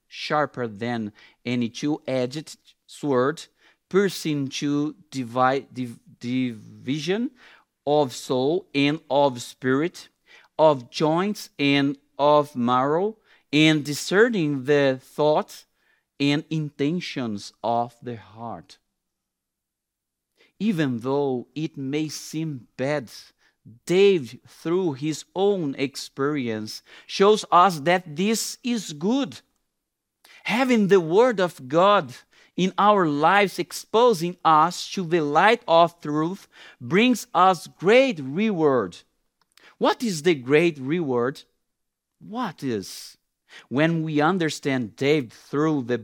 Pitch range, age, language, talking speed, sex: 125-170 Hz, 50-69, English, 100 wpm, male